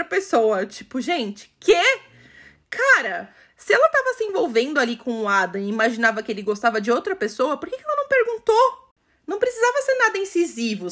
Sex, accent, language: female, Brazilian, Portuguese